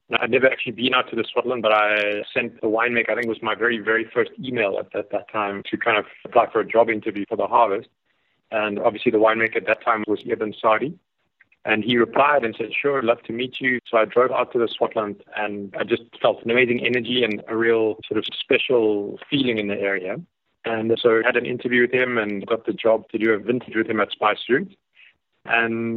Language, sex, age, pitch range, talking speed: English, male, 30-49, 110-120 Hz, 245 wpm